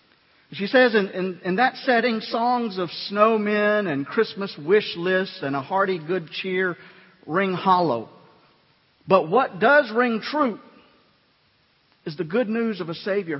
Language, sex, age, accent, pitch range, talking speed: English, male, 50-69, American, 130-185 Hz, 150 wpm